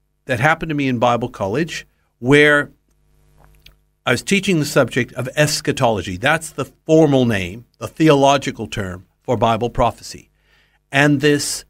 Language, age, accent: English, 60-79, American